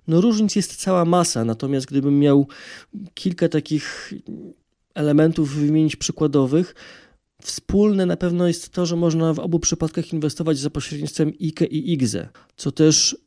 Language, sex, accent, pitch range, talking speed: Polish, male, native, 150-175 Hz, 140 wpm